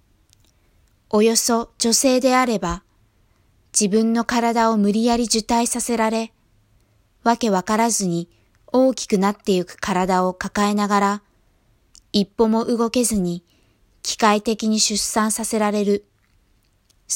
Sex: female